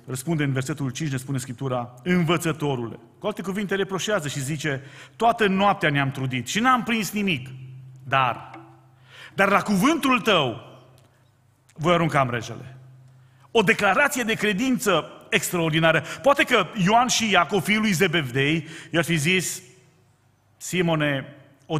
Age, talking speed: 30-49, 130 wpm